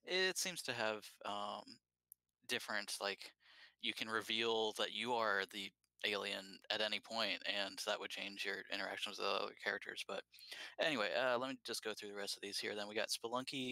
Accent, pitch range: American, 100-135 Hz